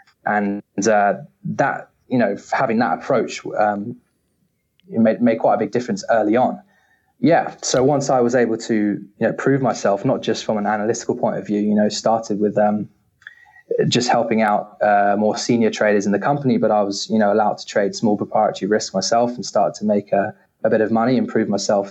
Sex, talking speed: male, 210 wpm